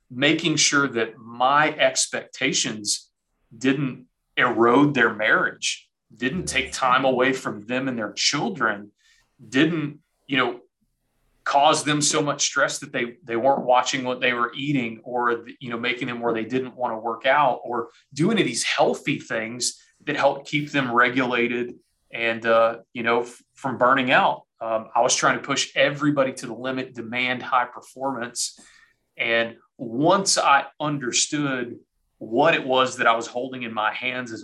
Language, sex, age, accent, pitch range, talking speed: English, male, 30-49, American, 115-135 Hz, 165 wpm